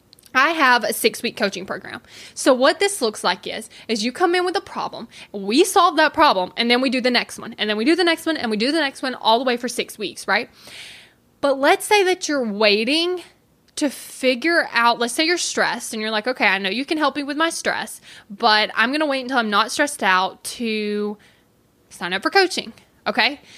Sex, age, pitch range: female, 10-29, 215-300 Hz